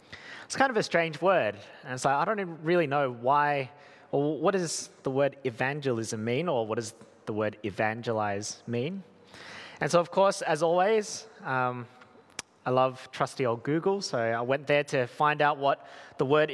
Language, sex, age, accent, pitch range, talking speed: English, male, 20-39, Australian, 125-165 Hz, 180 wpm